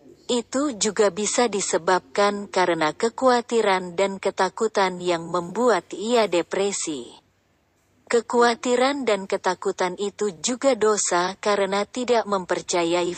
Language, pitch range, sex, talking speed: Indonesian, 180-230 Hz, female, 95 wpm